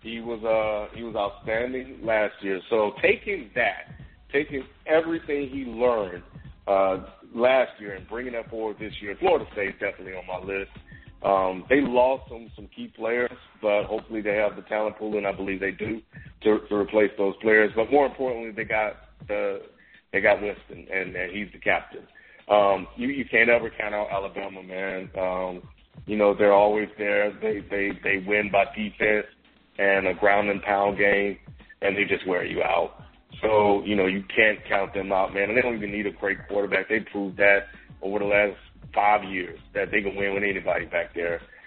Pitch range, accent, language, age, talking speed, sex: 100-130 Hz, American, English, 40-59, 195 wpm, male